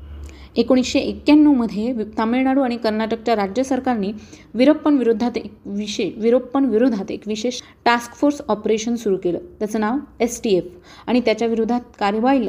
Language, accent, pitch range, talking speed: Marathi, native, 200-250 Hz, 135 wpm